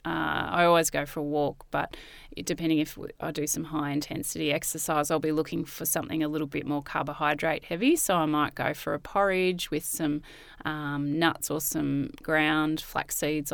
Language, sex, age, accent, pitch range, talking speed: English, female, 30-49, Australian, 150-165 Hz, 180 wpm